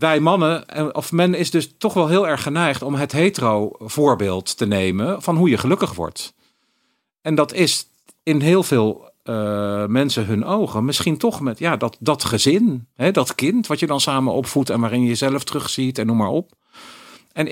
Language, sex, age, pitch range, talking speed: Dutch, male, 50-69, 105-155 Hz, 195 wpm